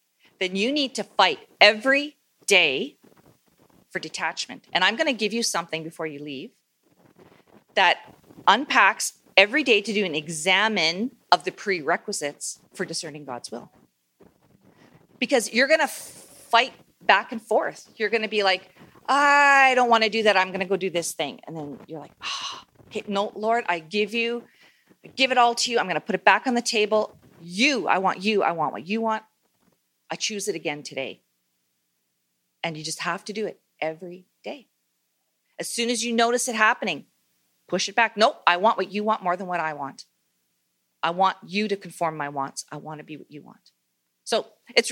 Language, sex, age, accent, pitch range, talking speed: English, female, 40-59, American, 155-230 Hz, 195 wpm